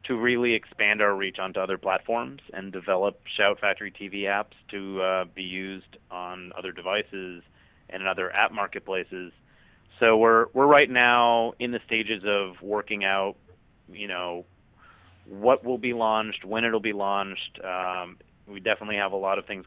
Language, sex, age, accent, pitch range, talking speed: English, male, 30-49, American, 95-110 Hz, 170 wpm